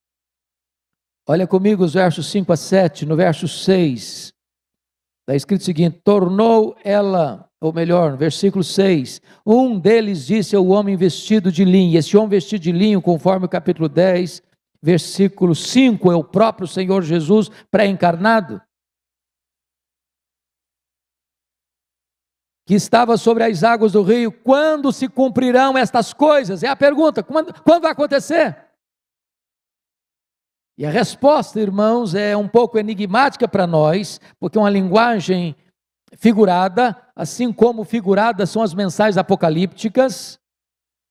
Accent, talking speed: Brazilian, 130 wpm